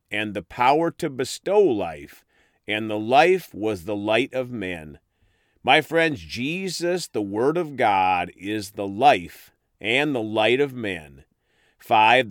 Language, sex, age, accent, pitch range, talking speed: English, male, 40-59, American, 105-160 Hz, 145 wpm